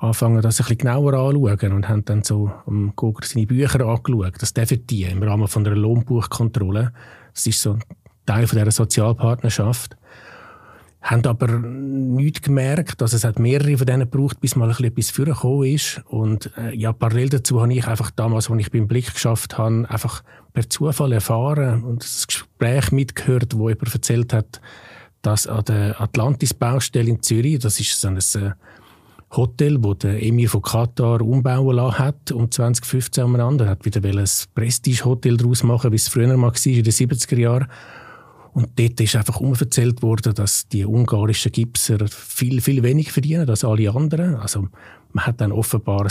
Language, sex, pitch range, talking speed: German, male, 110-130 Hz, 175 wpm